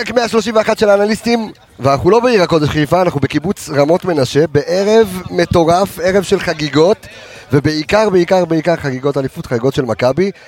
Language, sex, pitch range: Hebrew, male, 130-175 Hz